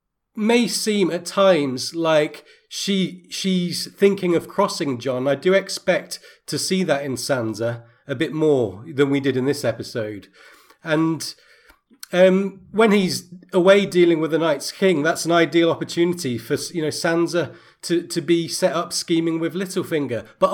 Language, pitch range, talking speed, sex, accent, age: English, 140-175 Hz, 160 wpm, male, British, 40-59